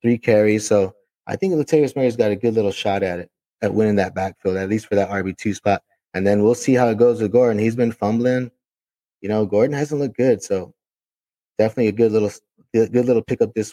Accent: American